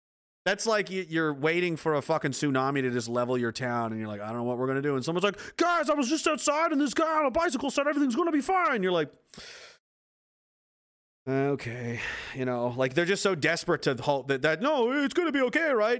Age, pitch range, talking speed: 30-49, 125-170 Hz, 245 wpm